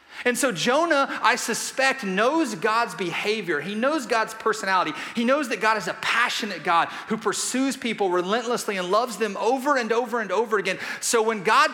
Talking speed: 185 wpm